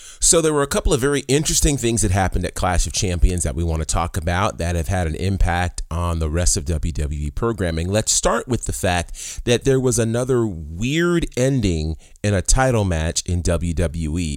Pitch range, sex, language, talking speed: 85-110 Hz, male, English, 205 wpm